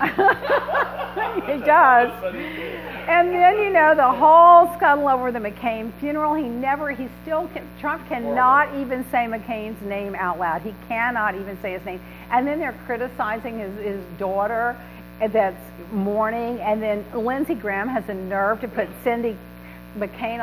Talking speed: 150 wpm